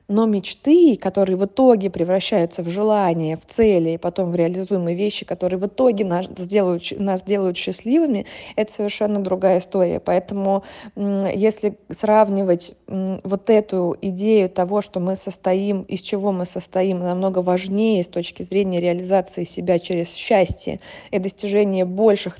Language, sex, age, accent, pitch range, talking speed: Russian, female, 20-39, native, 185-210 Hz, 140 wpm